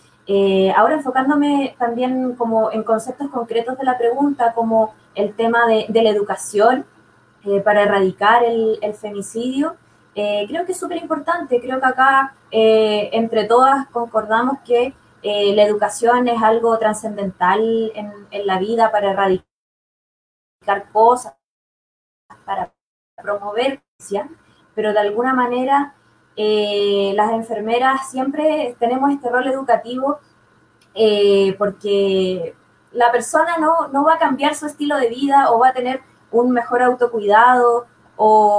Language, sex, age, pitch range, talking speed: Spanish, female, 20-39, 210-270 Hz, 140 wpm